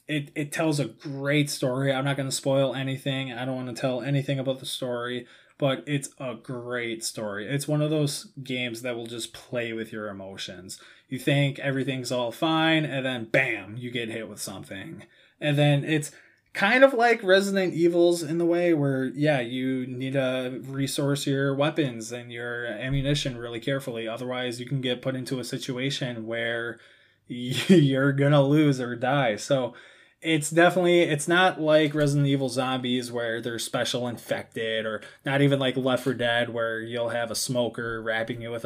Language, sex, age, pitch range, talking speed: English, male, 20-39, 120-145 Hz, 185 wpm